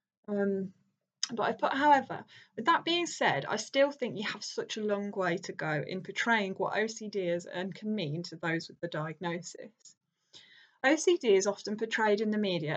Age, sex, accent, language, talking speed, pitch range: 10-29, female, British, English, 190 wpm, 180-220 Hz